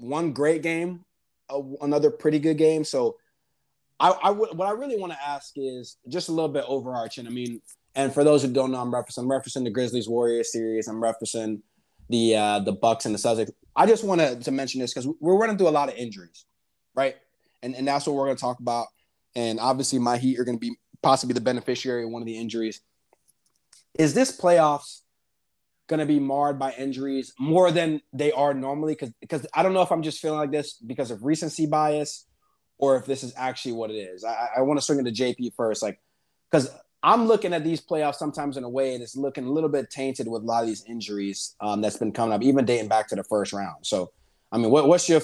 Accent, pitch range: American, 115-150 Hz